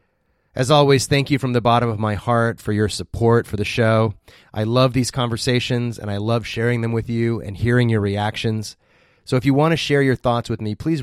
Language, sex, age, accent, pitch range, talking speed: English, male, 30-49, American, 105-125 Hz, 230 wpm